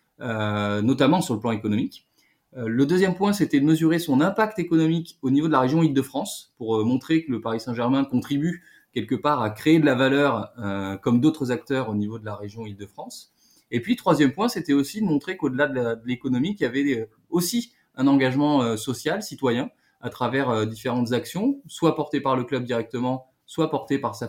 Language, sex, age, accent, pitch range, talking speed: French, male, 20-39, French, 115-150 Hz, 210 wpm